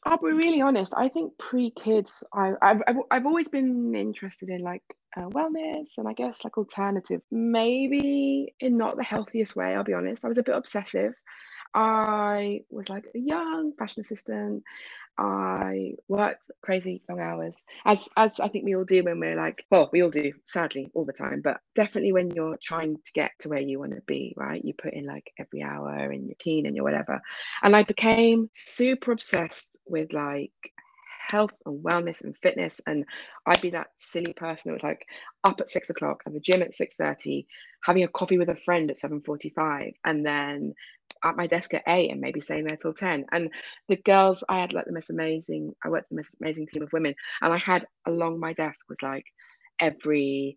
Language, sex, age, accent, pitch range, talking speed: English, female, 20-39, British, 150-220 Hz, 200 wpm